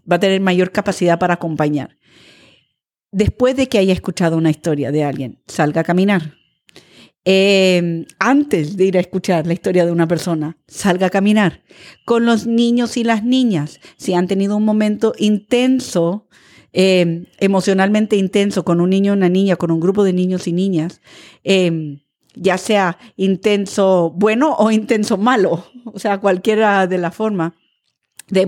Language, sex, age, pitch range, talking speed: Spanish, female, 40-59, 175-215 Hz, 160 wpm